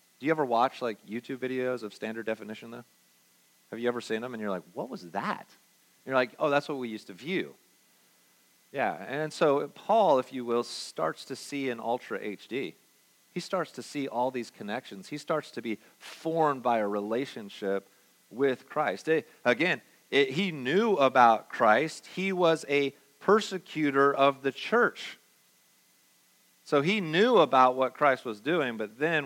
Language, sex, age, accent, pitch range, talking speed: English, male, 40-59, American, 115-150 Hz, 170 wpm